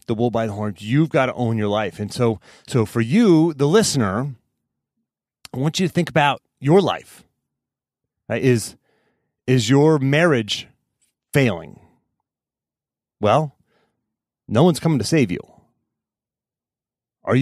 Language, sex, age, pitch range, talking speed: English, male, 30-49, 110-165 Hz, 135 wpm